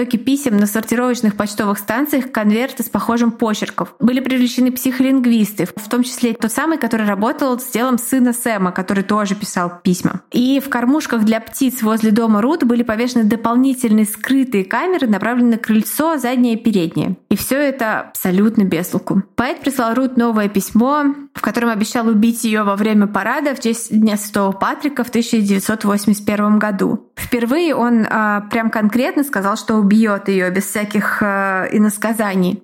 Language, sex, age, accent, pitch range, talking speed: Russian, female, 20-39, native, 210-245 Hz, 160 wpm